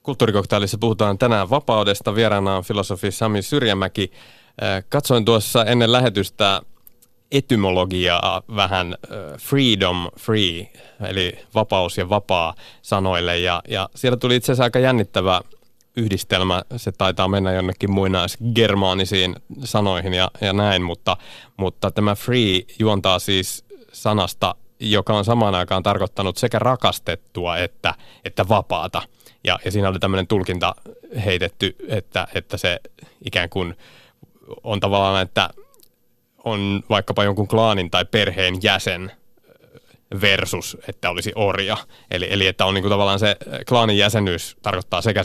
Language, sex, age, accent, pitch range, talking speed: Finnish, male, 30-49, native, 95-115 Hz, 125 wpm